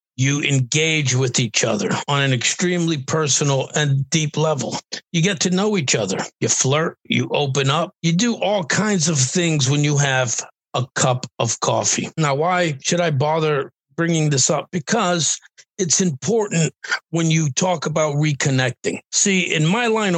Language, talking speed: English, 165 wpm